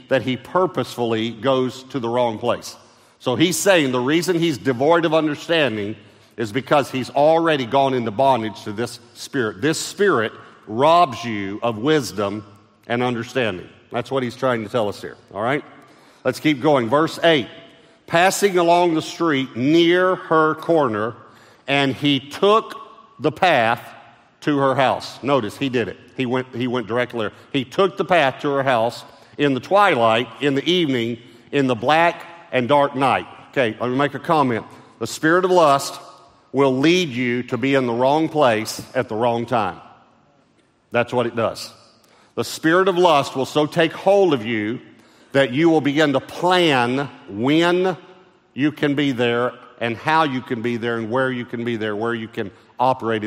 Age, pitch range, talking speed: 50-69, 115-150 Hz, 175 wpm